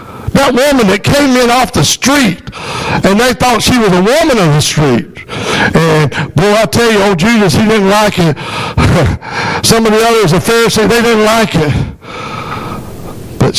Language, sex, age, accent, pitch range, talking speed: English, male, 60-79, American, 190-250 Hz, 175 wpm